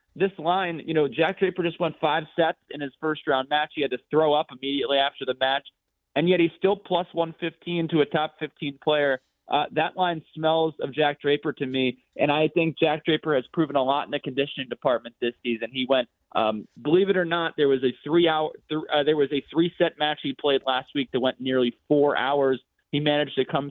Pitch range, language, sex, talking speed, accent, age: 130-160 Hz, English, male, 230 wpm, American, 30-49